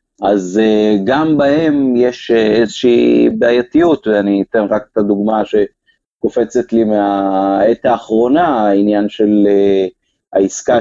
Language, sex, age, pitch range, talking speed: Hebrew, male, 30-49, 105-135 Hz, 100 wpm